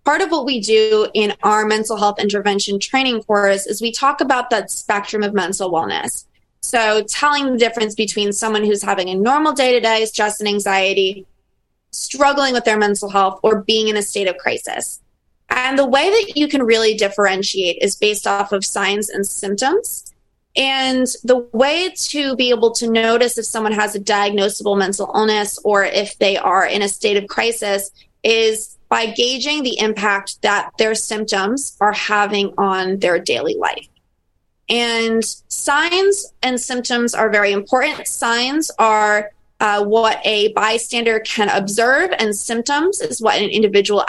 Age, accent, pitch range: 20-39, American, 205-245 Hz